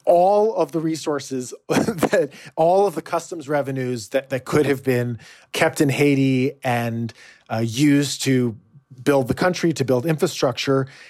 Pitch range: 125-155 Hz